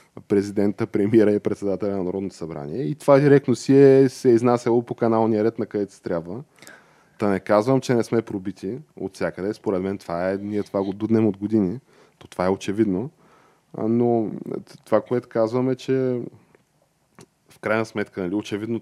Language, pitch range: Bulgarian, 95-115 Hz